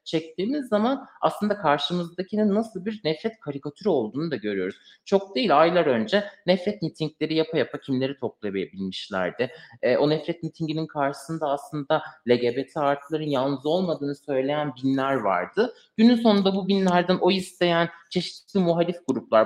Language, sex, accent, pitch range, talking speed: Turkish, male, native, 140-185 Hz, 135 wpm